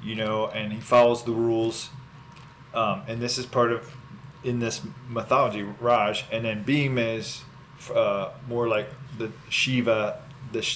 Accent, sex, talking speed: American, male, 150 wpm